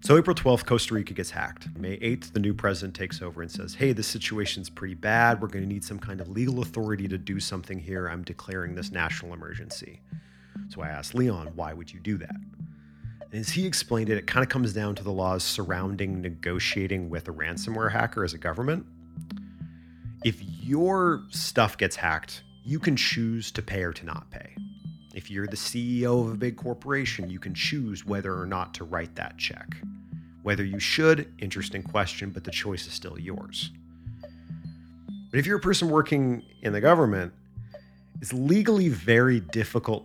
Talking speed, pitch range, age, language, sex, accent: 185 wpm, 90-120 Hz, 30-49, English, male, American